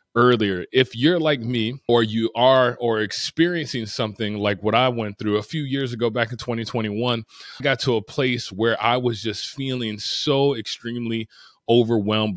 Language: English